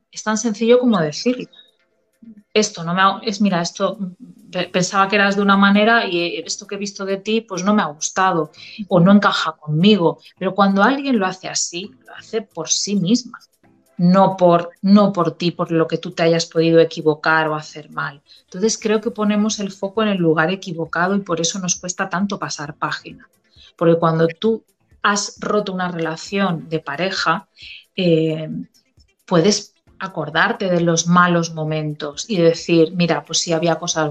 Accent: Spanish